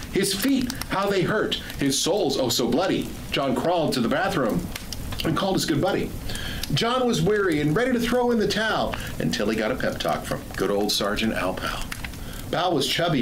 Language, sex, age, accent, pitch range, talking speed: English, male, 50-69, American, 125-195 Hz, 205 wpm